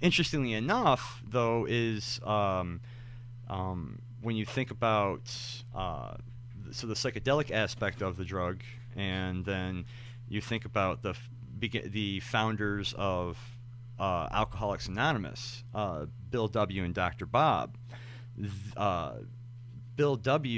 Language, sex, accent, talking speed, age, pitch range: English, male, American, 115 wpm, 30-49, 95-120 Hz